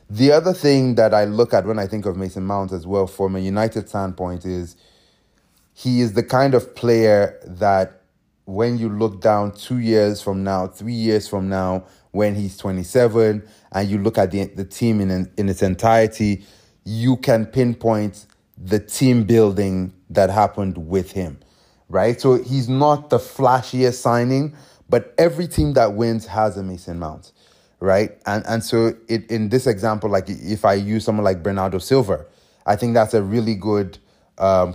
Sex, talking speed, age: male, 175 wpm, 30-49